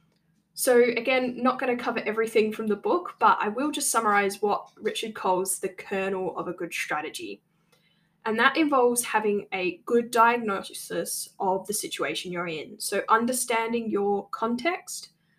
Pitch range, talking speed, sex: 195-250 Hz, 150 wpm, female